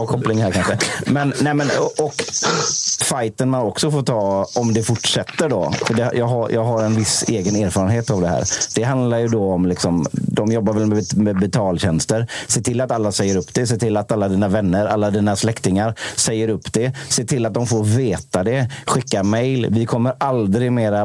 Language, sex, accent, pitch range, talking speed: Swedish, male, native, 95-120 Hz, 210 wpm